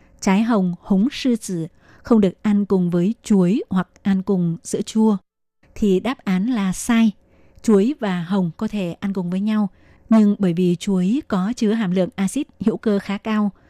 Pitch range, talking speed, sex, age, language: 190-220 Hz, 190 wpm, female, 20-39, Vietnamese